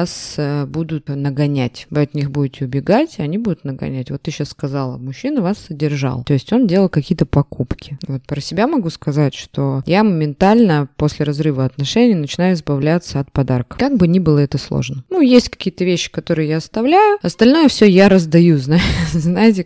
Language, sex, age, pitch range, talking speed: Russian, female, 20-39, 150-210 Hz, 175 wpm